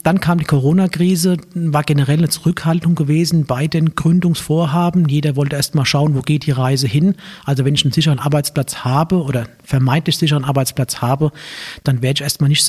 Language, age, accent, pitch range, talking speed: German, 50-69, German, 135-160 Hz, 185 wpm